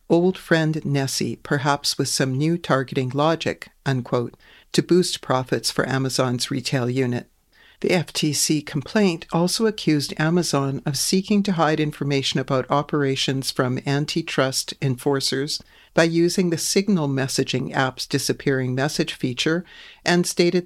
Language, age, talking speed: English, 60-79, 130 wpm